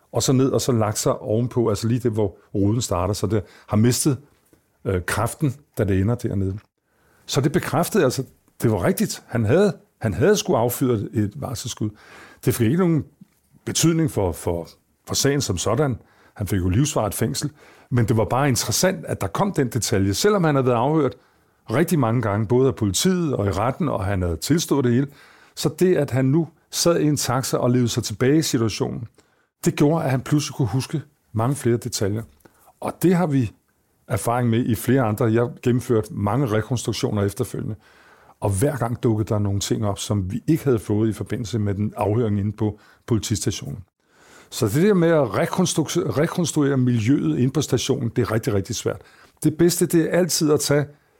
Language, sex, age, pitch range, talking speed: Danish, male, 50-69, 110-150 Hz, 200 wpm